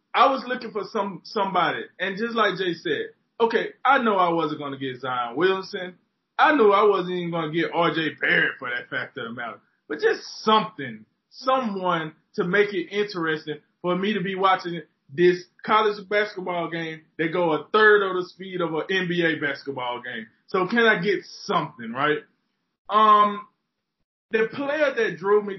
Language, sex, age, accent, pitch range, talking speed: English, male, 20-39, American, 155-215 Hz, 180 wpm